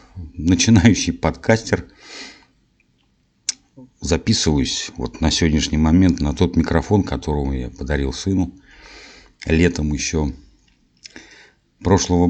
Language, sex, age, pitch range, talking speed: Russian, male, 50-69, 80-105 Hz, 85 wpm